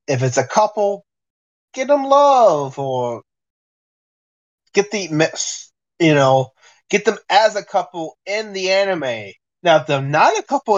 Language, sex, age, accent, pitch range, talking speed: English, male, 20-39, American, 135-180 Hz, 145 wpm